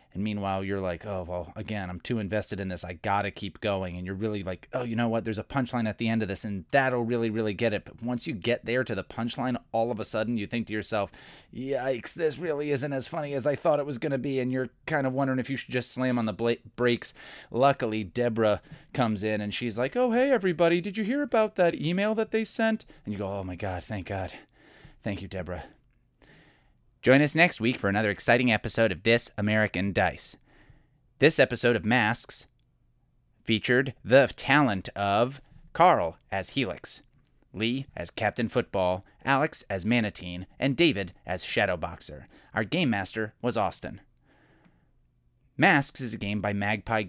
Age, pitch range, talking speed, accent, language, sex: 30-49, 100-135 Hz, 200 wpm, American, English, male